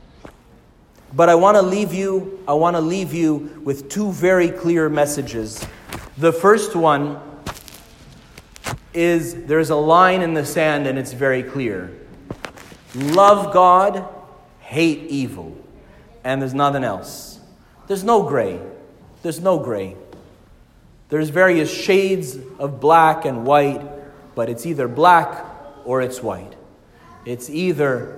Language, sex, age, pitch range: English, male, 40-59, 125-170 Hz